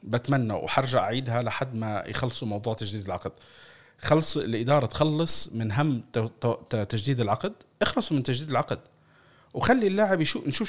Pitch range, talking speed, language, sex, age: 110-145 Hz, 130 wpm, Arabic, male, 40-59